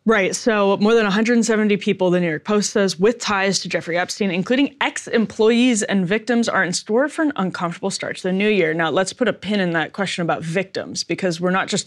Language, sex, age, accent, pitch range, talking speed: English, female, 20-39, American, 170-210 Hz, 230 wpm